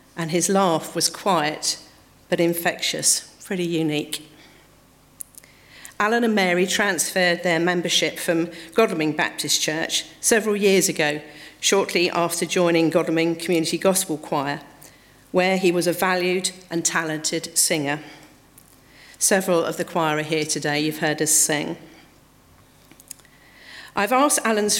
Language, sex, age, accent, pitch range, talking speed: English, female, 40-59, British, 160-195 Hz, 125 wpm